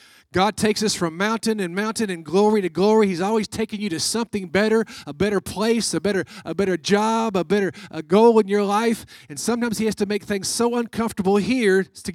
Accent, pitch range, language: American, 180-220 Hz, English